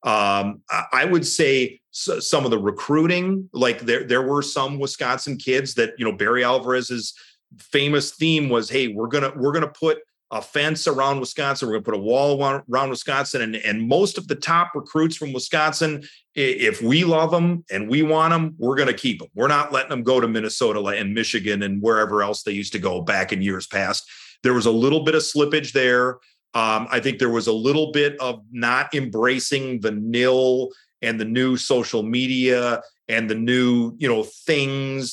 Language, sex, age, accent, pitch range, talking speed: English, male, 40-59, American, 125-155 Hz, 195 wpm